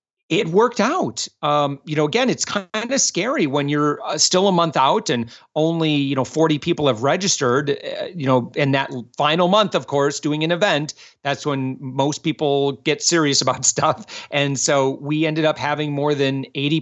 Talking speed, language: 195 wpm, English